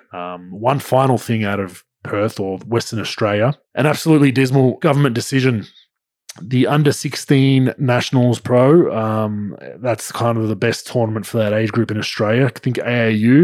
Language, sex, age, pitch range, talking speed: English, male, 20-39, 110-130 Hz, 160 wpm